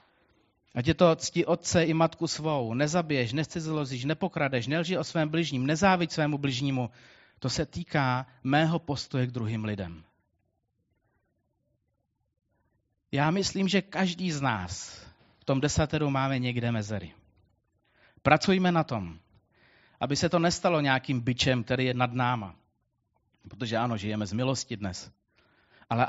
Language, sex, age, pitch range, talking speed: Czech, male, 30-49, 110-150 Hz, 135 wpm